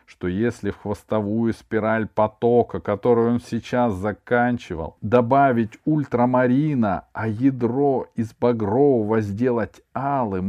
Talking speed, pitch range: 105 wpm, 90-130 Hz